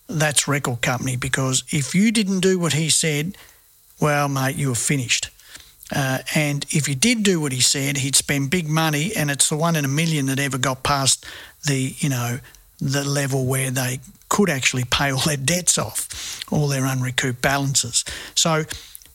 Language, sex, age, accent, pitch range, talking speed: English, male, 50-69, Australian, 135-170 Hz, 185 wpm